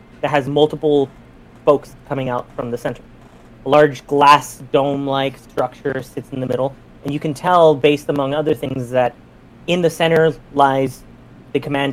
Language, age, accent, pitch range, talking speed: English, 30-49, American, 130-160 Hz, 165 wpm